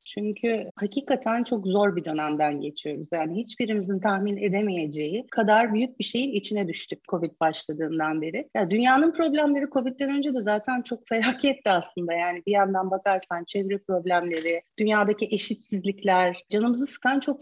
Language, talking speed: Turkish, 140 wpm